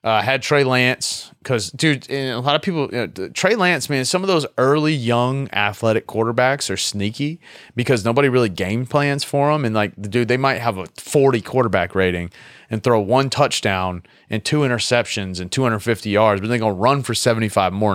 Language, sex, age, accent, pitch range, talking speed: English, male, 30-49, American, 95-125 Hz, 200 wpm